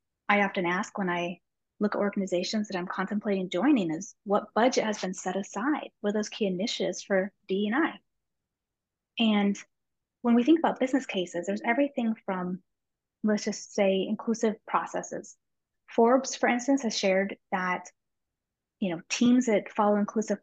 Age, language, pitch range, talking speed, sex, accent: 30-49, English, 195-240 Hz, 160 wpm, female, American